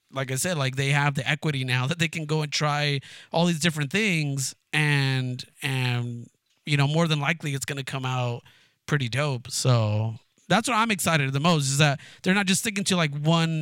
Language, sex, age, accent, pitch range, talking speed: English, male, 30-49, American, 135-165 Hz, 210 wpm